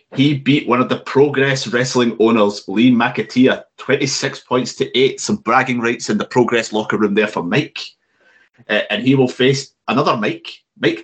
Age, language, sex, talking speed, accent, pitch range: 30-49, English, male, 180 wpm, British, 110-140 Hz